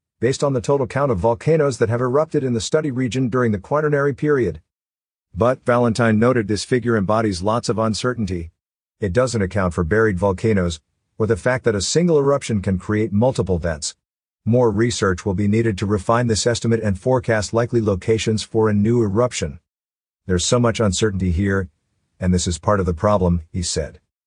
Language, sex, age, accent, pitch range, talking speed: English, male, 50-69, American, 100-125 Hz, 185 wpm